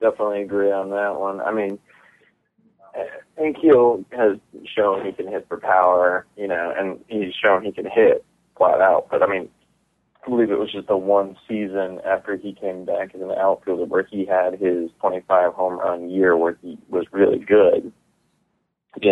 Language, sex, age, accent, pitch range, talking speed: English, male, 20-39, American, 90-100 Hz, 180 wpm